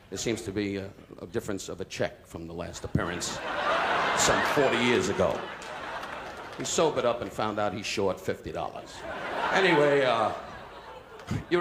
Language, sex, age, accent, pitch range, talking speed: English, male, 50-69, American, 130-200 Hz, 150 wpm